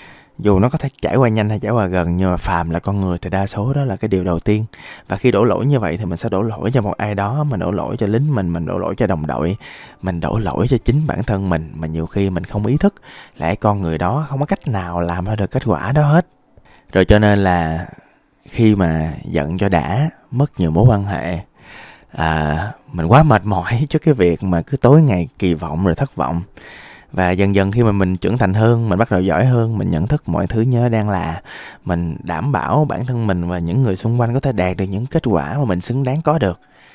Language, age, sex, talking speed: Vietnamese, 20-39, male, 260 wpm